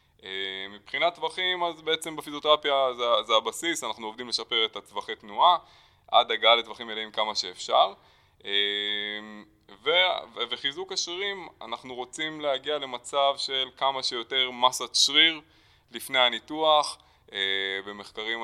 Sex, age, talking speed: male, 20-39, 115 wpm